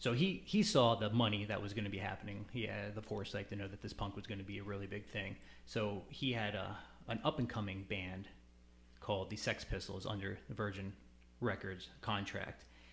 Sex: male